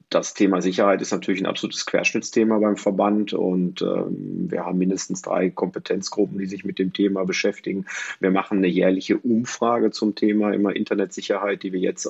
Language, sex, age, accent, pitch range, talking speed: German, male, 40-59, German, 95-100 Hz, 175 wpm